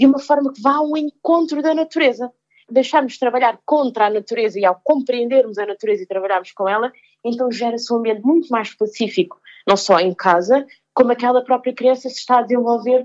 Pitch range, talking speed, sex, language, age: 210-270 Hz, 195 wpm, female, Portuguese, 20-39